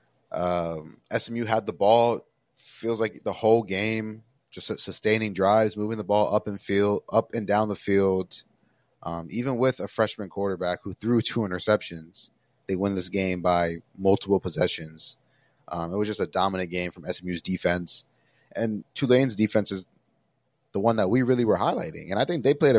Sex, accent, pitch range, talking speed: male, American, 90-115 Hz, 175 wpm